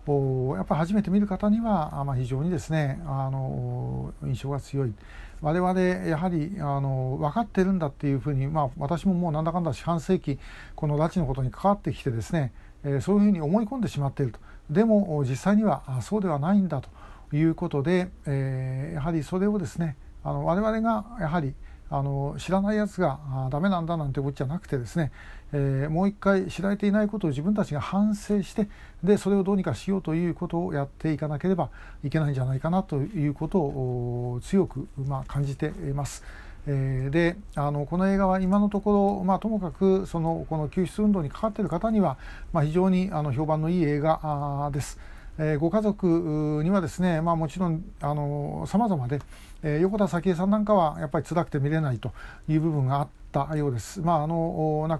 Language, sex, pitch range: Japanese, male, 140-185 Hz